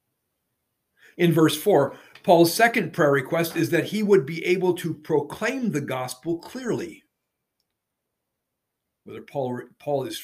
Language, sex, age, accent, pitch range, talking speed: English, male, 50-69, American, 125-170 Hz, 130 wpm